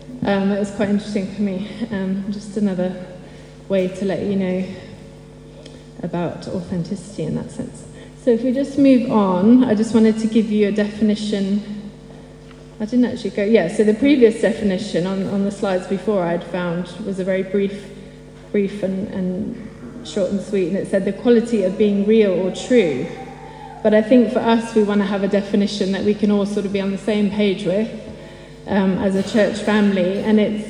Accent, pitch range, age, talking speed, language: British, 185-220 Hz, 20-39, 195 wpm, English